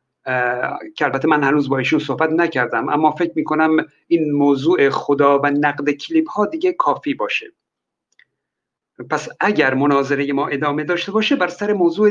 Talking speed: 155 wpm